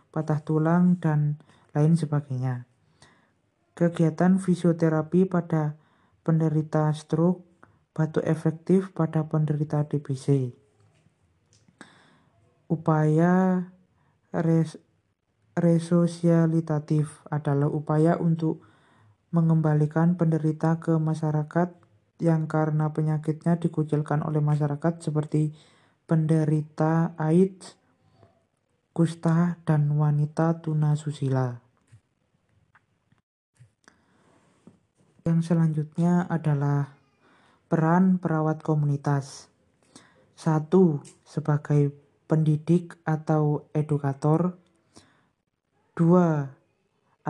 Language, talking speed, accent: Indonesian, 65 wpm, native